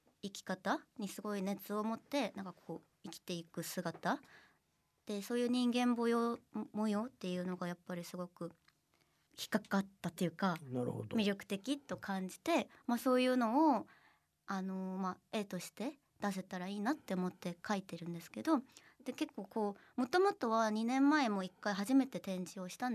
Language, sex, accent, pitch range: Japanese, male, native, 185-255 Hz